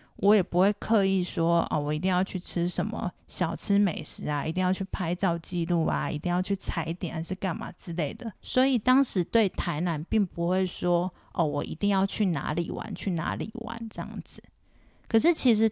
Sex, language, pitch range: female, Chinese, 165-205 Hz